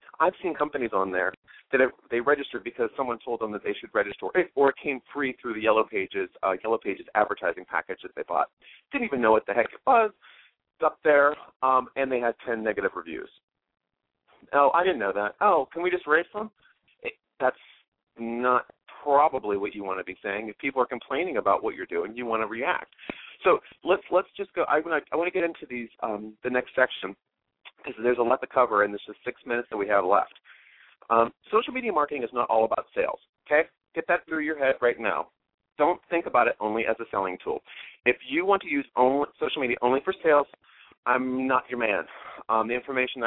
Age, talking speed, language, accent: 40-59, 220 wpm, English, American